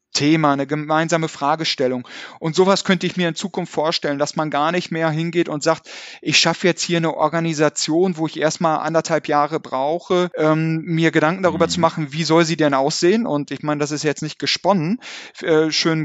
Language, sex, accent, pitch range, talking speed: German, male, German, 150-170 Hz, 200 wpm